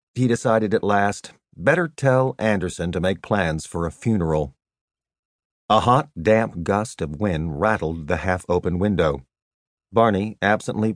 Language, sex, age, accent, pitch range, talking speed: English, male, 50-69, American, 85-110 Hz, 135 wpm